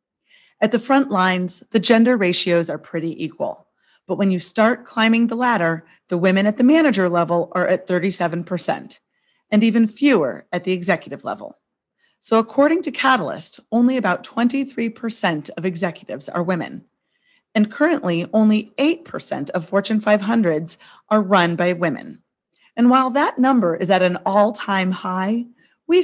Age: 30-49